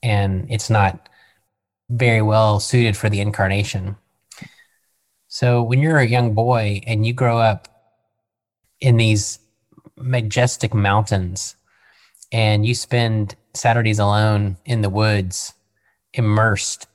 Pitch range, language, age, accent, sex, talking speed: 105-125 Hz, English, 20-39, American, male, 115 wpm